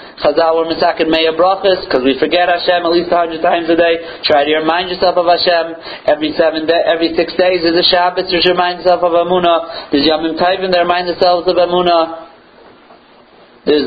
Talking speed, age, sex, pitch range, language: 175 wpm, 50-69, male, 175-260 Hz, Italian